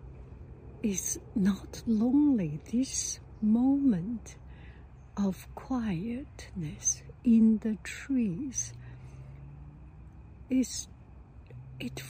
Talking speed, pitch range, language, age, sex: 60 wpm, 160-225 Hz, English, 60-79, female